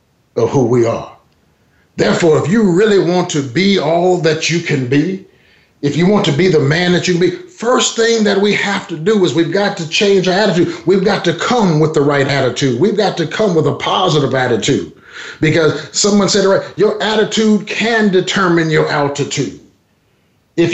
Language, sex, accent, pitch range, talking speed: English, male, American, 145-195 Hz, 195 wpm